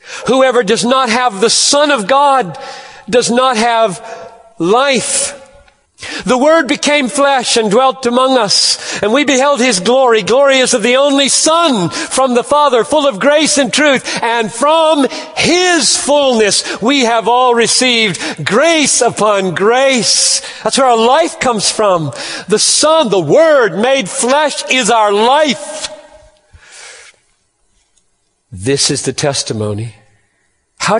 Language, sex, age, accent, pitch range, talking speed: English, male, 50-69, American, 175-280 Hz, 135 wpm